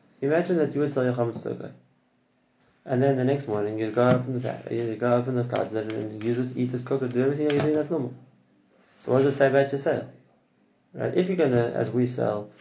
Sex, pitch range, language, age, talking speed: male, 115-140 Hz, English, 20-39, 265 wpm